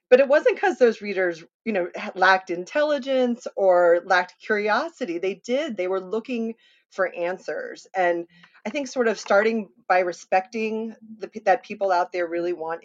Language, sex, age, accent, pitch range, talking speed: English, female, 30-49, American, 170-205 Hz, 160 wpm